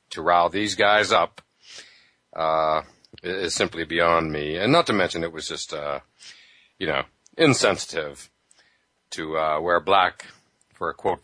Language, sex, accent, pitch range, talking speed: English, male, American, 80-105 Hz, 150 wpm